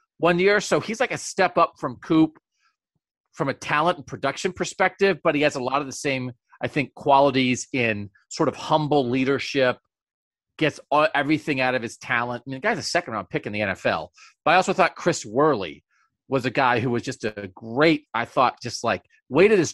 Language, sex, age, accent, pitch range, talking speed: English, male, 30-49, American, 120-180 Hz, 205 wpm